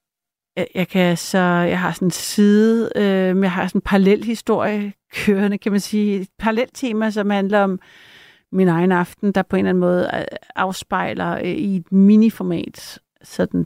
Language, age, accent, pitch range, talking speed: Danish, 60-79, native, 175-205 Hz, 170 wpm